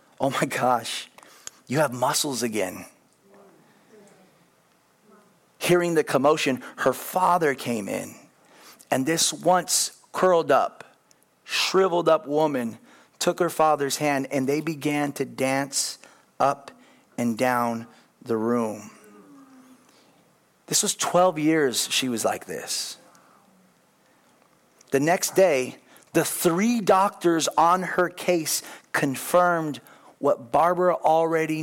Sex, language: male, English